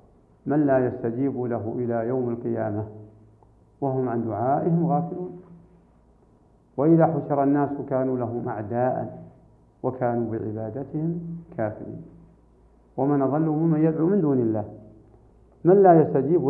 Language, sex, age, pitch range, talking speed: Arabic, male, 50-69, 120-175 Hz, 110 wpm